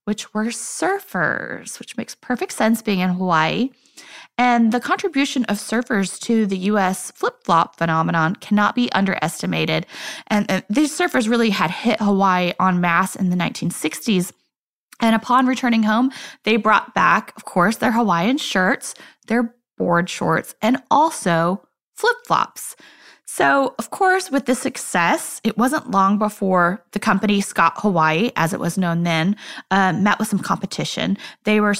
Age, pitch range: 20-39, 185-245 Hz